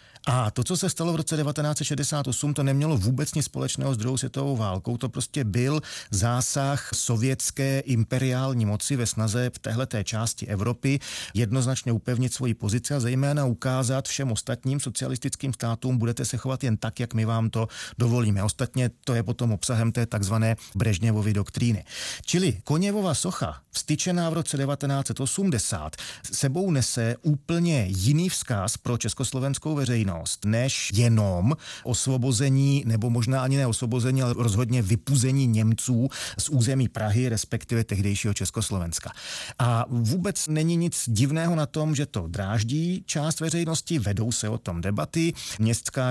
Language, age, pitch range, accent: Czech, 40-59, 115-140 Hz, native